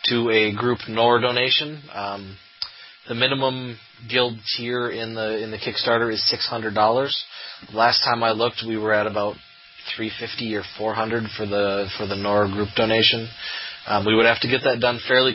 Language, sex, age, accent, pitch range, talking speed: English, male, 30-49, American, 100-115 Hz, 170 wpm